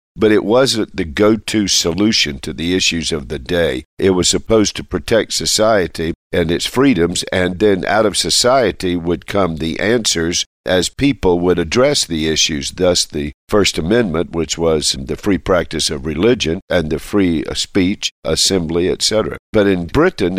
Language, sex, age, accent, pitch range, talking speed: English, male, 50-69, American, 85-105 Hz, 165 wpm